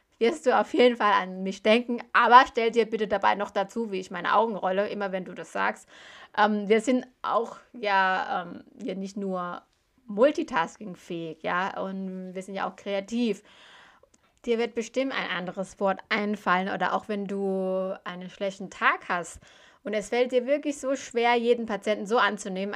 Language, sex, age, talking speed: German, female, 20-39, 180 wpm